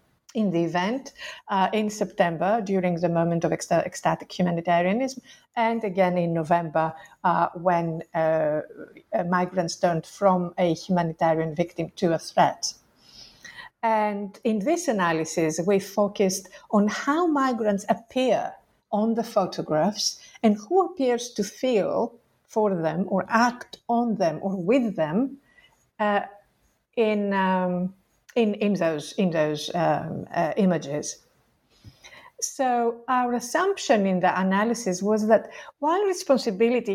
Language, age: English, 50-69